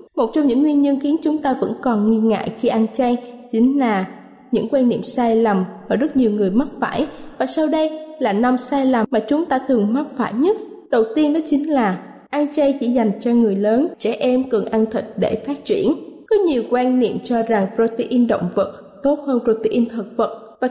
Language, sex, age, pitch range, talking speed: Vietnamese, female, 20-39, 220-280 Hz, 225 wpm